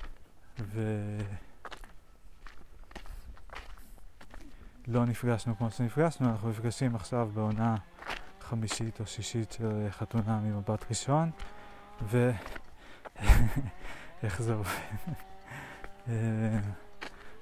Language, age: Hebrew, 20-39